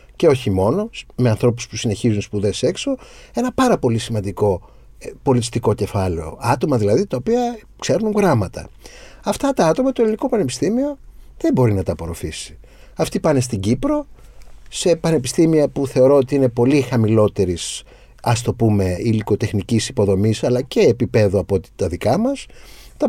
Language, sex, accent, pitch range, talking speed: Greek, male, native, 115-145 Hz, 150 wpm